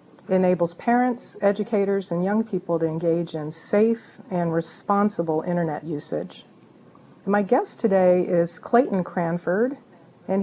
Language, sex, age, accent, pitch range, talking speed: English, female, 50-69, American, 175-210 Hz, 120 wpm